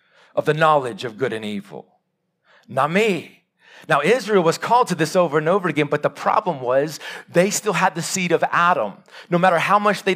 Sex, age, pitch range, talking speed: male, 40-59, 155-190 Hz, 205 wpm